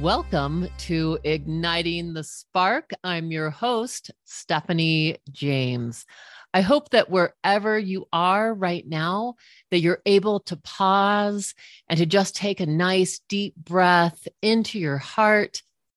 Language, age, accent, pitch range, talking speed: English, 40-59, American, 155-205 Hz, 130 wpm